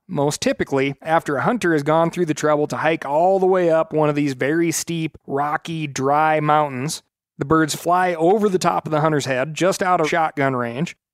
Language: English